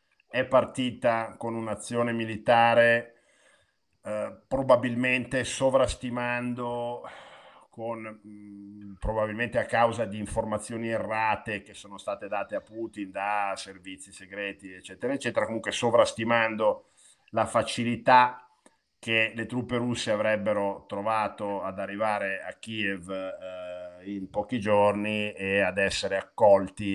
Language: Italian